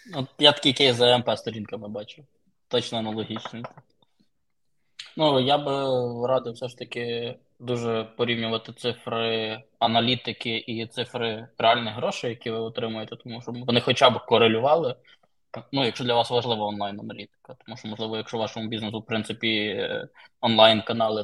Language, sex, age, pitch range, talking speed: Ukrainian, male, 20-39, 110-125 Hz, 140 wpm